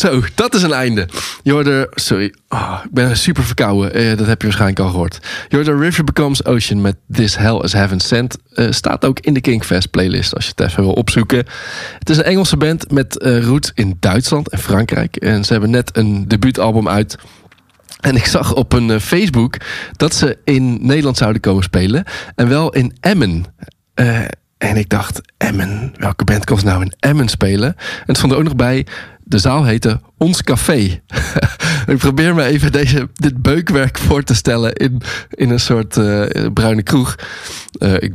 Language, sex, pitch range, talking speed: Dutch, male, 105-135 Hz, 190 wpm